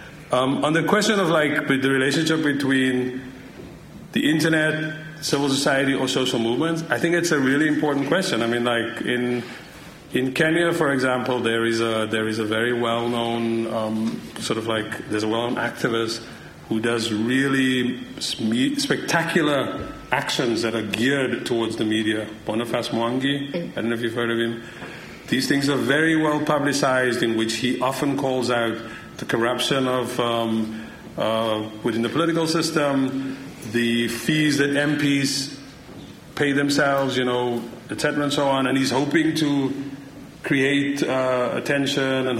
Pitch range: 115-145 Hz